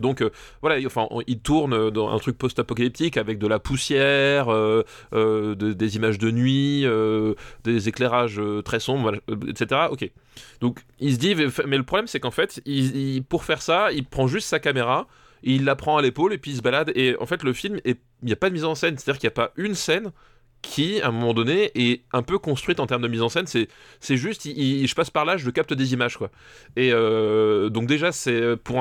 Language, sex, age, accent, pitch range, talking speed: French, male, 20-39, French, 115-140 Hz, 245 wpm